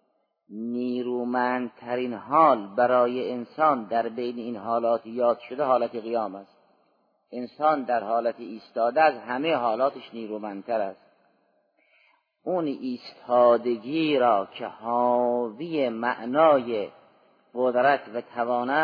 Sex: male